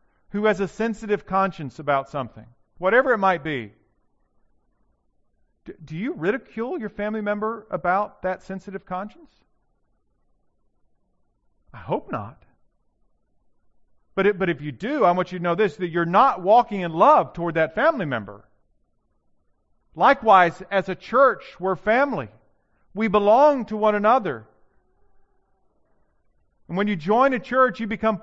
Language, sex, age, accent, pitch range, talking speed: English, male, 40-59, American, 140-205 Hz, 140 wpm